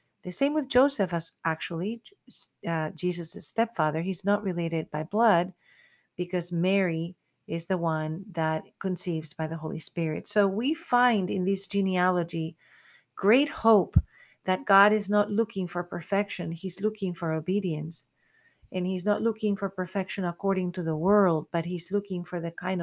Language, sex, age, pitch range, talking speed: English, female, 40-59, 165-200 Hz, 160 wpm